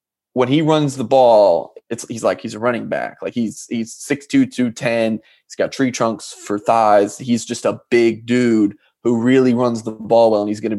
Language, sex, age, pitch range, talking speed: English, male, 20-39, 110-130 Hz, 205 wpm